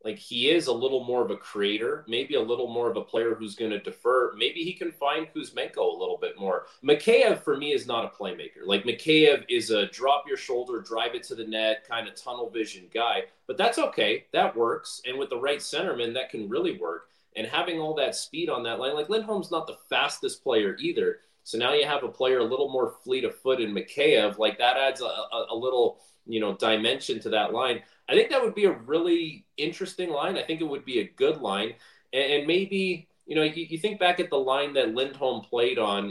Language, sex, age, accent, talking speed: English, male, 30-49, American, 235 wpm